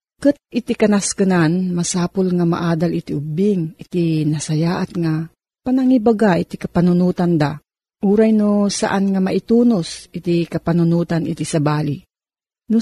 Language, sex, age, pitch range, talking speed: Filipino, female, 40-59, 165-230 Hz, 115 wpm